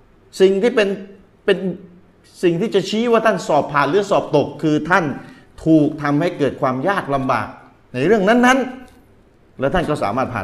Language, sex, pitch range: Thai, male, 135-215 Hz